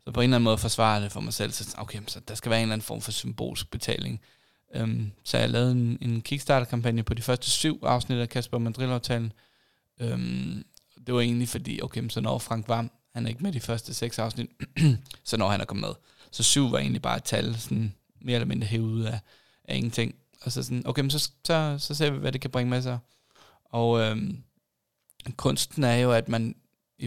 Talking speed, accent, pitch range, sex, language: 225 wpm, native, 115-130 Hz, male, Danish